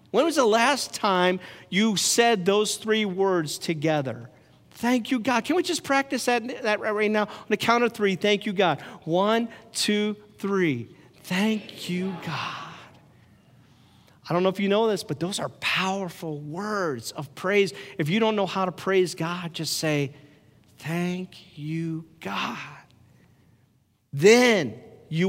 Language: English